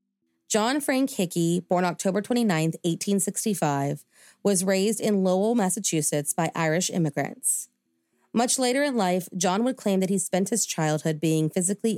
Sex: female